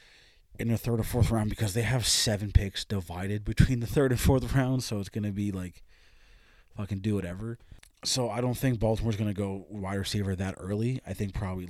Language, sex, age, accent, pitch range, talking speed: English, male, 20-39, American, 95-120 Hz, 205 wpm